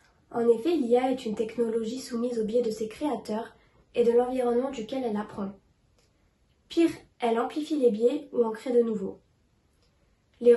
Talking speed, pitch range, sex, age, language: 165 wpm, 225-265 Hz, female, 20-39, French